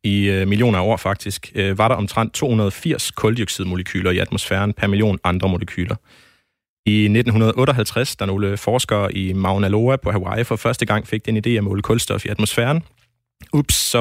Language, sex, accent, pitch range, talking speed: Danish, male, native, 95-115 Hz, 165 wpm